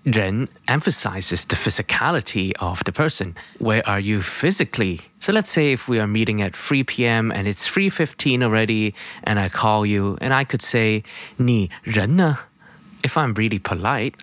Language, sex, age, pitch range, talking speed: English, male, 20-39, 100-150 Hz, 155 wpm